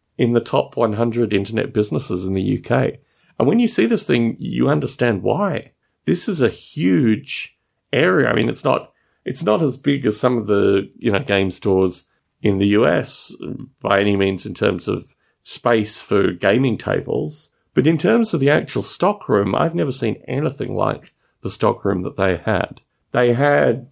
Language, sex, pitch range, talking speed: English, male, 100-135 Hz, 185 wpm